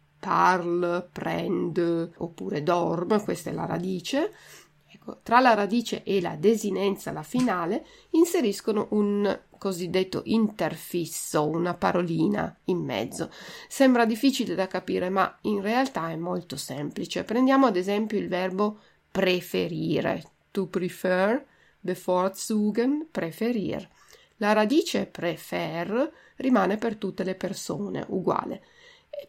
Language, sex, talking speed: Italian, female, 115 wpm